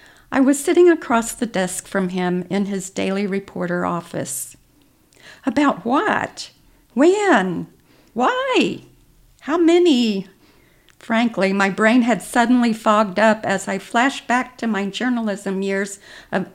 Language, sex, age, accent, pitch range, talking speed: English, female, 60-79, American, 190-260 Hz, 125 wpm